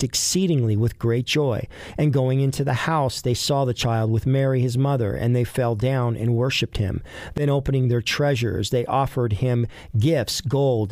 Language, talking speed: English, 180 wpm